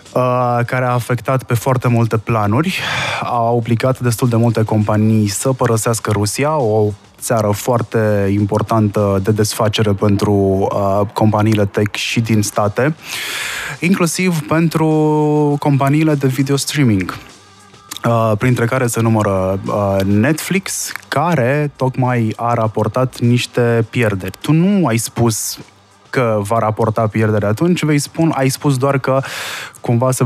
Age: 20-39